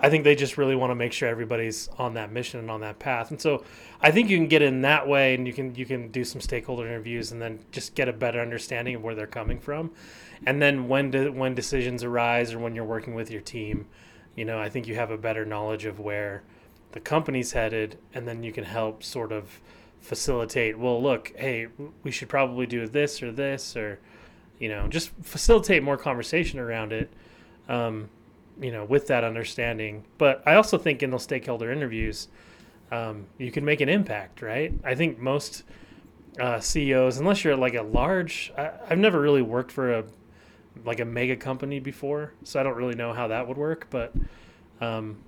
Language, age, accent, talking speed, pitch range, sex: English, 20-39, American, 205 wpm, 110-135 Hz, male